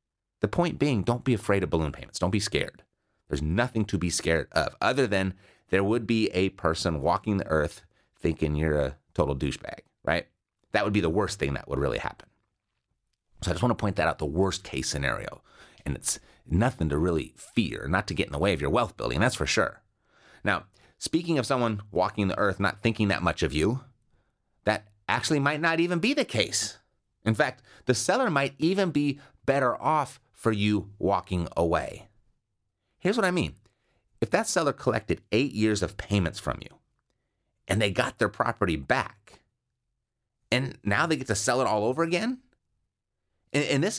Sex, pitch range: male, 95-135 Hz